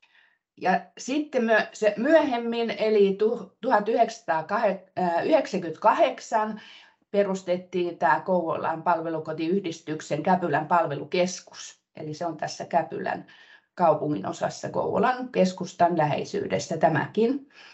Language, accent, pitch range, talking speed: Finnish, native, 175-230 Hz, 70 wpm